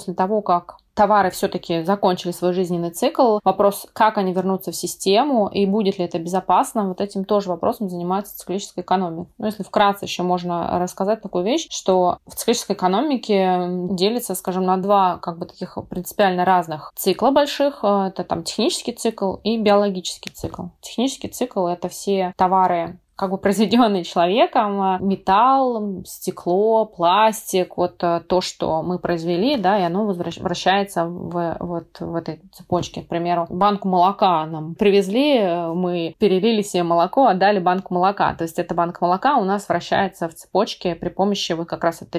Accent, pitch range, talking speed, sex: native, 175-205 Hz, 160 wpm, female